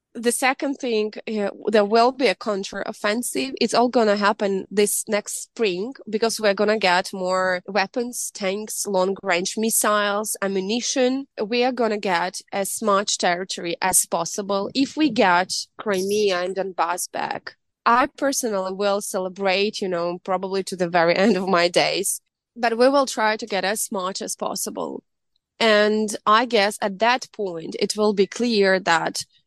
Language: English